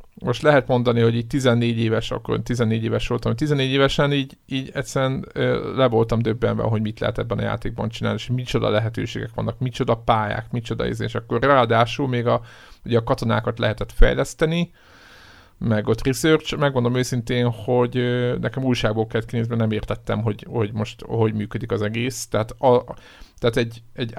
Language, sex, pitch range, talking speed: Hungarian, male, 110-125 Hz, 170 wpm